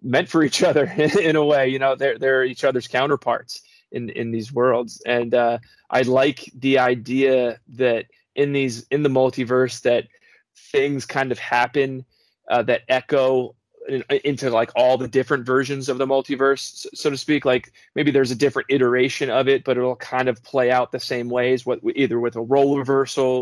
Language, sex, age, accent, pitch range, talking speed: English, male, 20-39, American, 125-140 Hz, 185 wpm